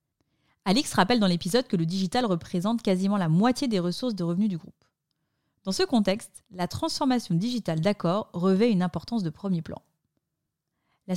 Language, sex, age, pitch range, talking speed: French, female, 30-49, 175-230 Hz, 165 wpm